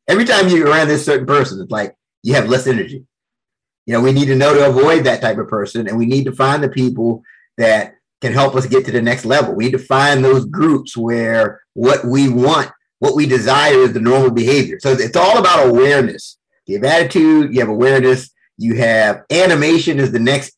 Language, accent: English, American